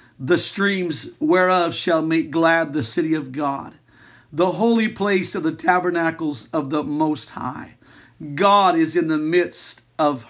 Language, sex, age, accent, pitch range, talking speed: English, male, 50-69, American, 160-205 Hz, 150 wpm